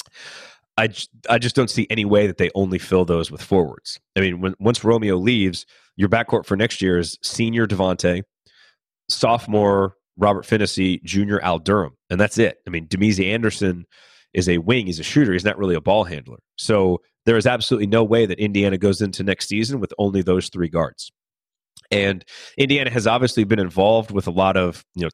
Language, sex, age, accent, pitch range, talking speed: English, male, 30-49, American, 90-105 Hz, 195 wpm